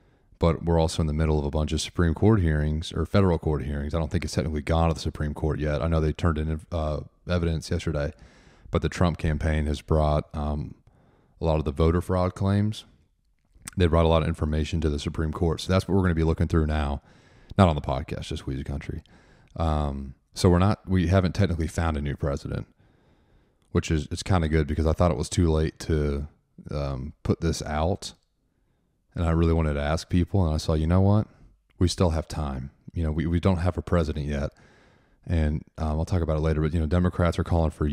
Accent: American